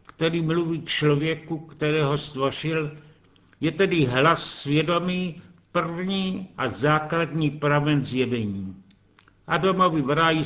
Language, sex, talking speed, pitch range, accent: Czech, male, 100 wpm, 125-160 Hz, native